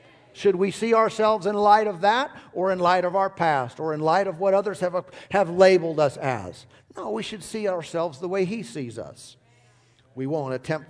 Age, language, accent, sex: 50-69, English, American, male